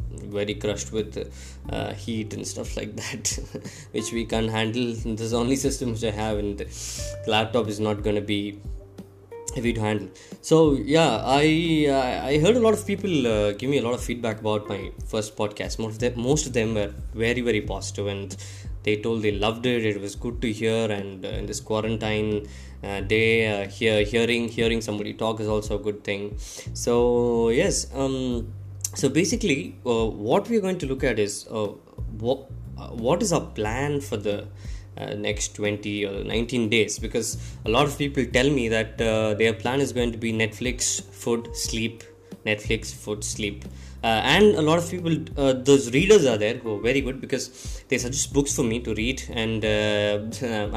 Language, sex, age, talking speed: Tamil, male, 20-39, 195 wpm